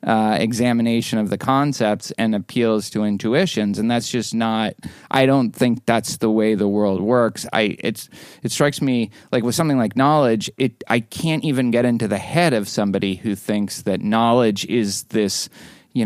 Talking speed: 185 wpm